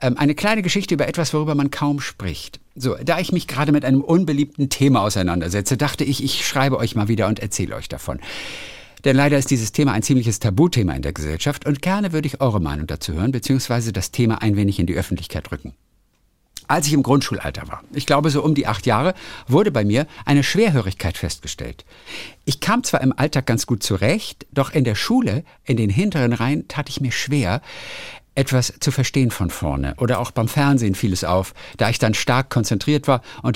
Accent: German